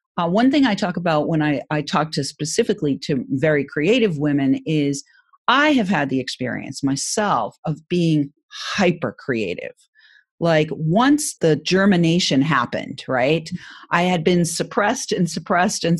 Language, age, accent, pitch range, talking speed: English, 40-59, American, 155-215 Hz, 145 wpm